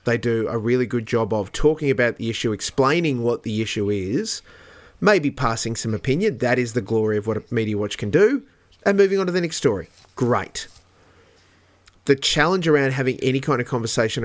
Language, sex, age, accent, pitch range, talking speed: English, male, 30-49, Australian, 110-140 Hz, 200 wpm